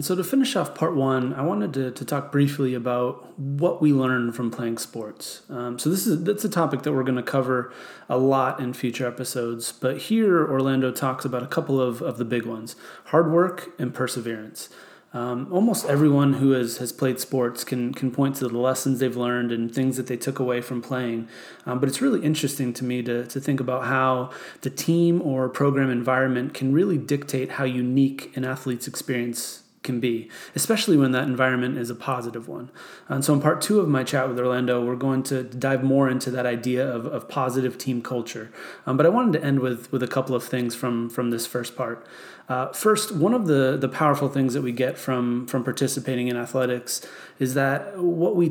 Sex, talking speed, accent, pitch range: male, 215 wpm, American, 125-140 Hz